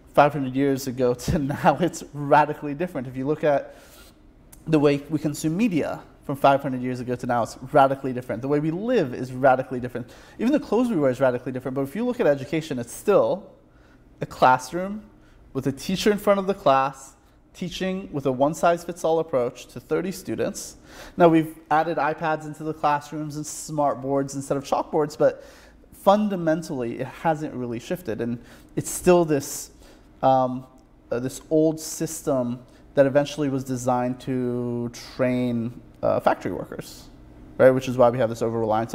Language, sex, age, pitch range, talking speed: English, male, 30-49, 125-155 Hz, 175 wpm